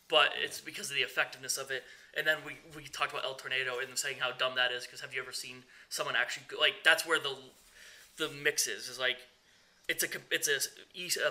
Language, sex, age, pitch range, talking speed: English, male, 20-39, 125-155 Hz, 245 wpm